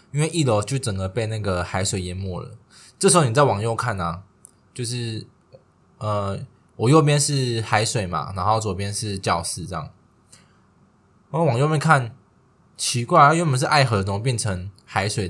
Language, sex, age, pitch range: Chinese, male, 20-39, 100-130 Hz